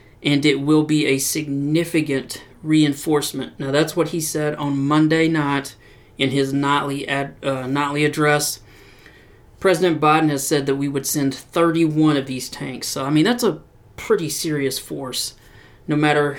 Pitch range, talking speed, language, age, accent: 135-155 Hz, 155 wpm, English, 30-49, American